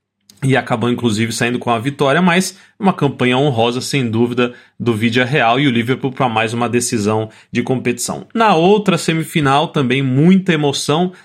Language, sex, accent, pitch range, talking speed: Portuguese, male, Brazilian, 120-150 Hz, 165 wpm